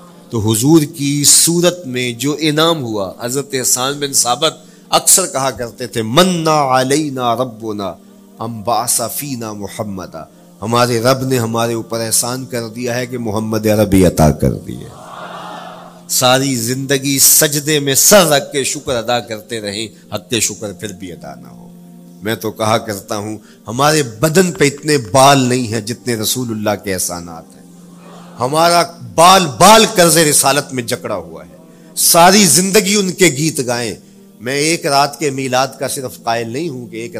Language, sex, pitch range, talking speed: English, male, 110-150 Hz, 160 wpm